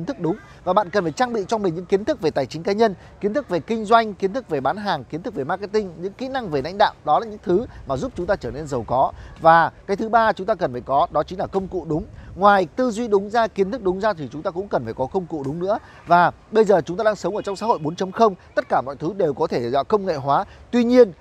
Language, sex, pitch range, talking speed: Vietnamese, male, 160-220 Hz, 310 wpm